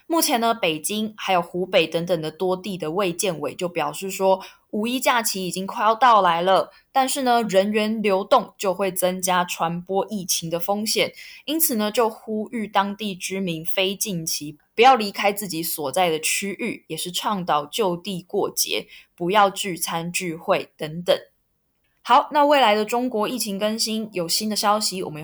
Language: Chinese